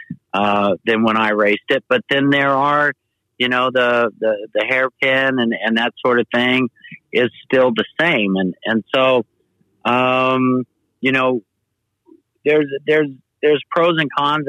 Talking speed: 155 wpm